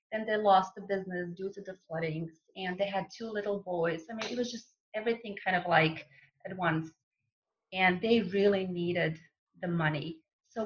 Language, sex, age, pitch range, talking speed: English, female, 30-49, 175-215 Hz, 185 wpm